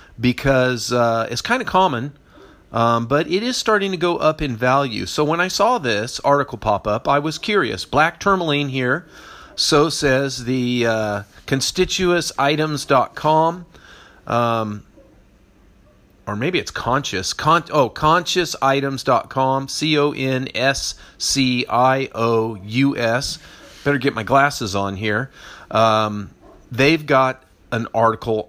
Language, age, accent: English, 40-59, American